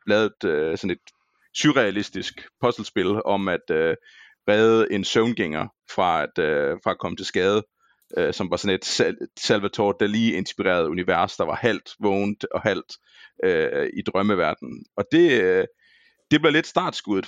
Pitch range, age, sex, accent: 110-165 Hz, 30-49, male, native